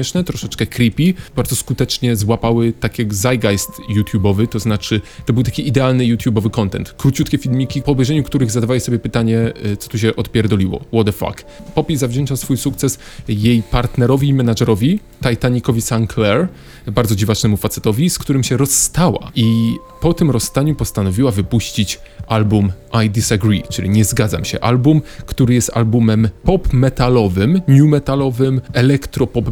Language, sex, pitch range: Polish, male, 110-135 Hz